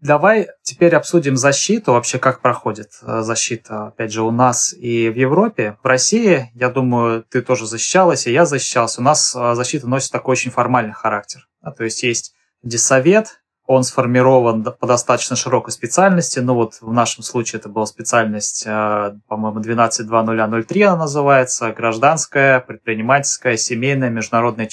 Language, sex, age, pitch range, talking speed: Russian, male, 20-39, 115-135 Hz, 145 wpm